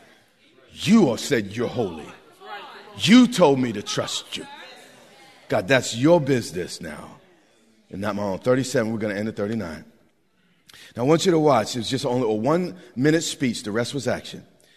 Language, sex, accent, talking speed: English, male, American, 180 wpm